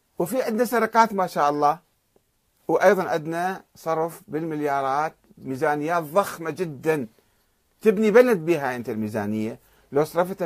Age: 50-69